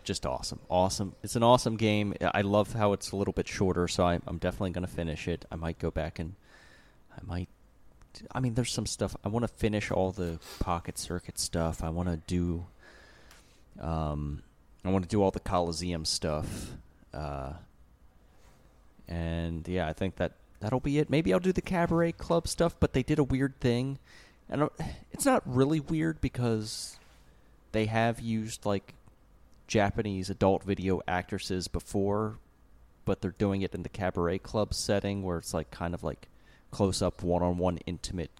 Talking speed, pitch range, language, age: 180 wpm, 85-110 Hz, English, 30-49